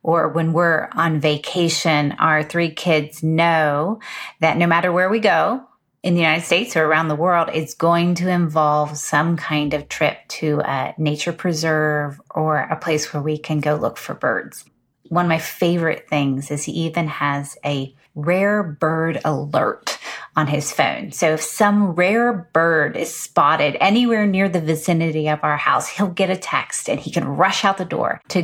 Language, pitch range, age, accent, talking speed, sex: English, 155-180 Hz, 30-49, American, 185 wpm, female